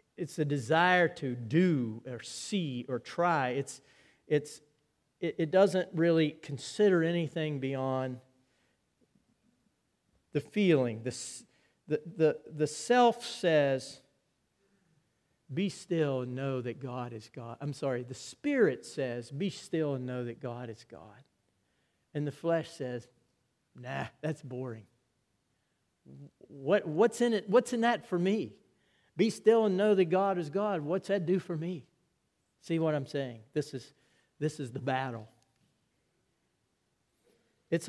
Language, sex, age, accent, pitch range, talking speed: English, male, 50-69, American, 130-170 Hz, 135 wpm